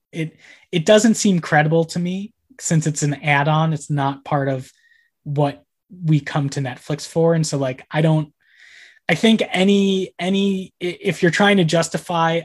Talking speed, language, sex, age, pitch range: 170 wpm, English, male, 20-39, 140-170 Hz